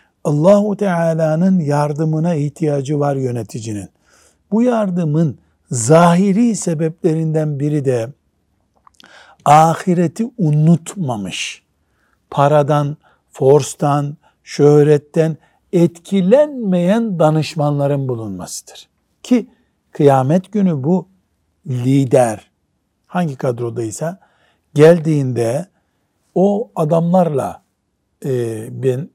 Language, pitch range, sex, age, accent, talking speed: Turkish, 135-175 Hz, male, 60-79, native, 65 wpm